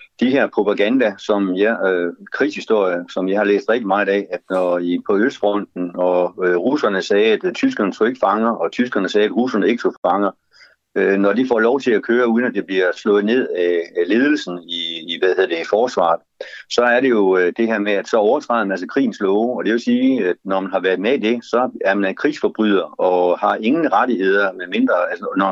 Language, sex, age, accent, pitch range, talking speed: Danish, male, 60-79, native, 95-125 Hz, 220 wpm